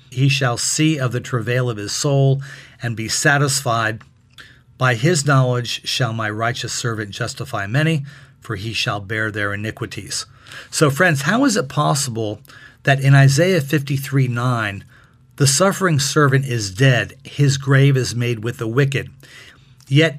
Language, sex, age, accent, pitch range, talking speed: English, male, 40-59, American, 120-145 Hz, 150 wpm